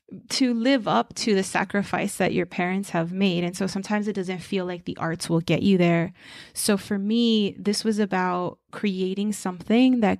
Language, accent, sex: English, American, female